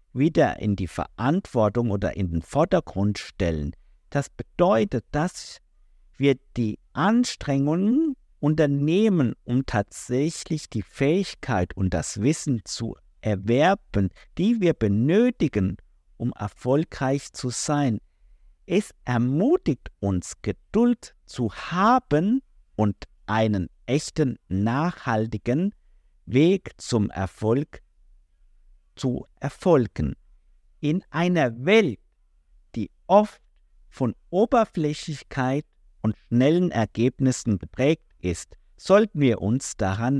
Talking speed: 95 wpm